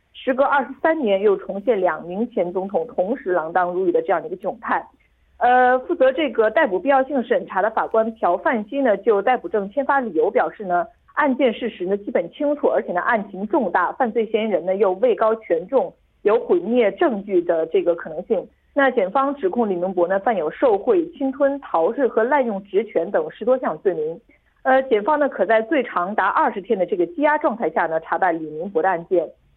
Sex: female